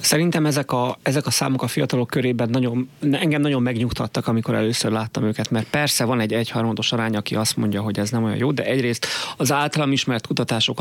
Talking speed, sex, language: 205 wpm, male, Hungarian